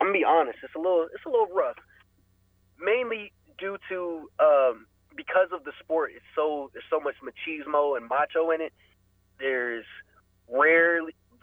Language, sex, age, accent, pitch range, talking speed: English, male, 20-39, American, 120-175 Hz, 170 wpm